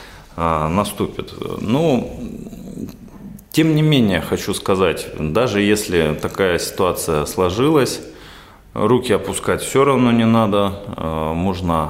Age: 30-49